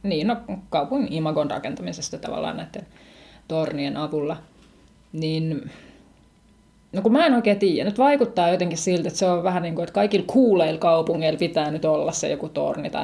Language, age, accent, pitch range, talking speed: Finnish, 30-49, native, 160-195 Hz, 170 wpm